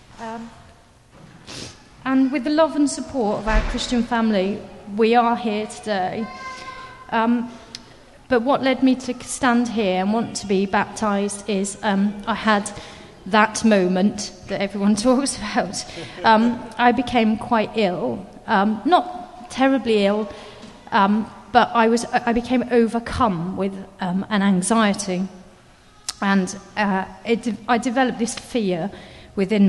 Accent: British